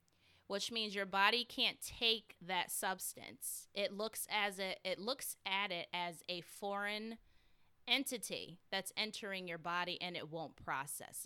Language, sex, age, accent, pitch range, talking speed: English, female, 20-39, American, 165-210 Hz, 150 wpm